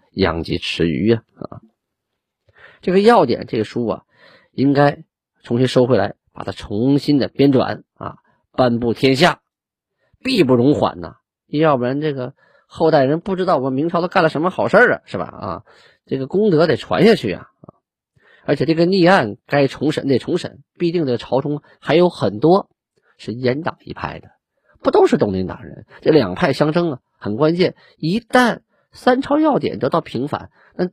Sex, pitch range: male, 115-180 Hz